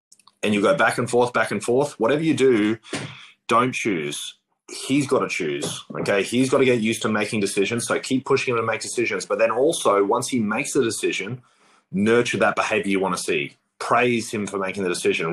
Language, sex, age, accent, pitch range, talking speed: English, male, 30-49, Australian, 105-145 Hz, 215 wpm